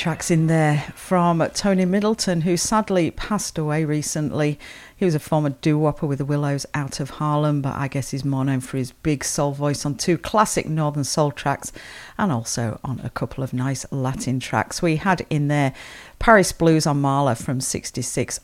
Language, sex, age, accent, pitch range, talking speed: English, female, 40-59, British, 135-165 Hz, 190 wpm